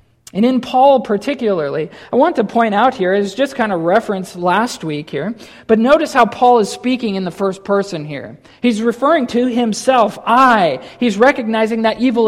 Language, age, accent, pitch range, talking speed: English, 40-59, American, 180-235 Hz, 190 wpm